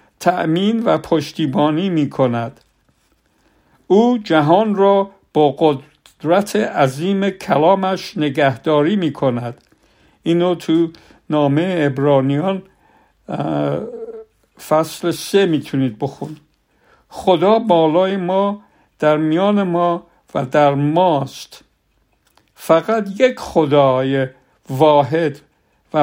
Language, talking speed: Persian, 80 wpm